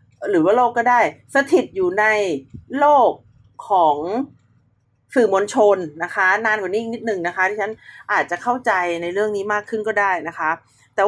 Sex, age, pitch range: female, 40-59, 200-265 Hz